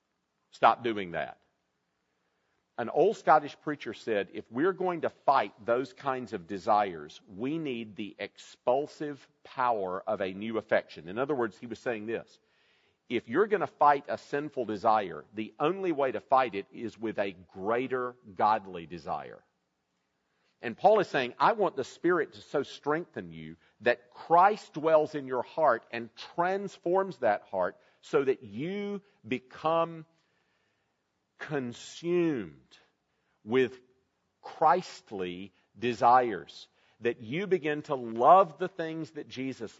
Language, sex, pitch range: English, male, 110-160 Hz